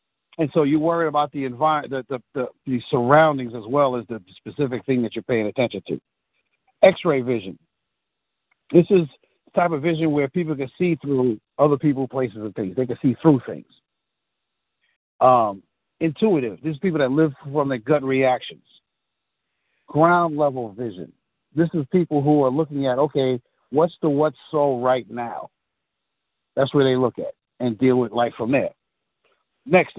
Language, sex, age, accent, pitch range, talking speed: English, male, 60-79, American, 125-160 Hz, 170 wpm